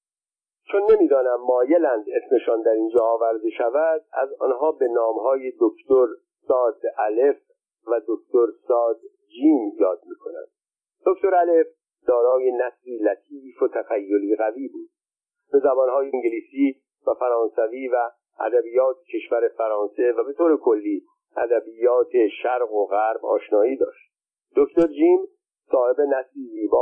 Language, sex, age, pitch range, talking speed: Persian, male, 50-69, 280-465 Hz, 125 wpm